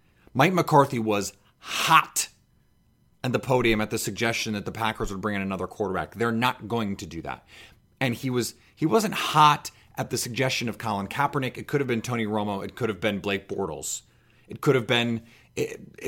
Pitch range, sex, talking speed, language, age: 105-135 Hz, male, 200 wpm, English, 30-49